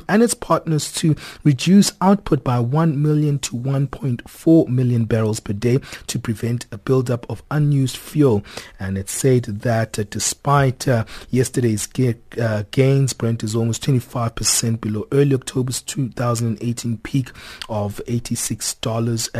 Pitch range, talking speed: 110-135 Hz, 125 wpm